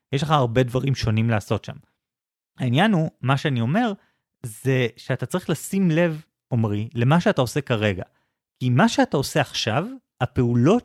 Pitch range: 115-160 Hz